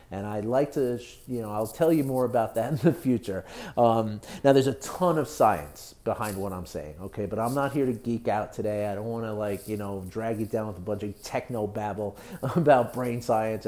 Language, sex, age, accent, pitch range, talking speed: English, male, 30-49, American, 105-125 Hz, 235 wpm